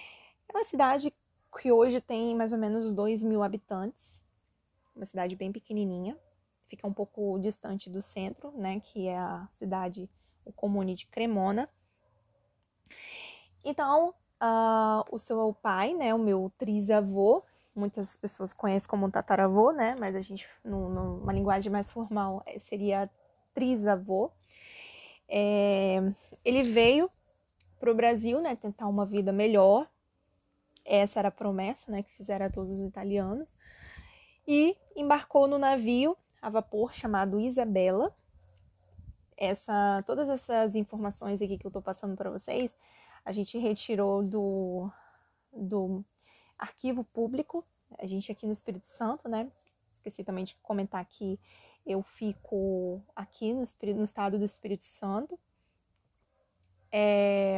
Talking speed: 130 wpm